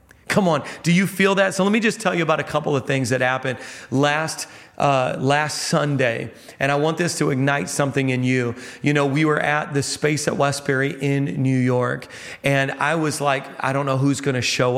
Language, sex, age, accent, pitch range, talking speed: English, male, 40-59, American, 135-165 Hz, 225 wpm